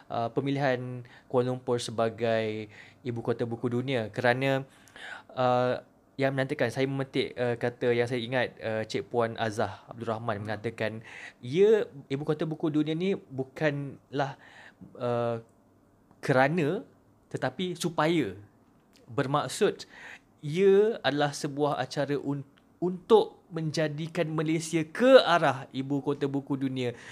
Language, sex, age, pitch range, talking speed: Malay, male, 20-39, 120-145 Hz, 120 wpm